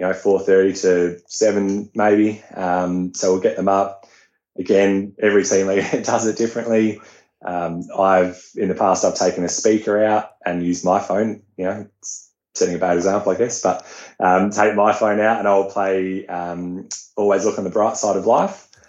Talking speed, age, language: 185 wpm, 20-39, English